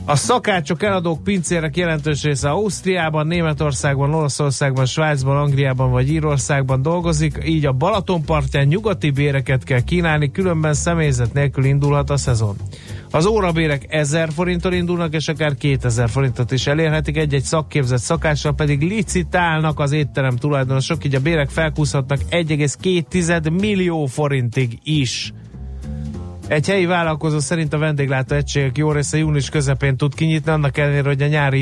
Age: 30-49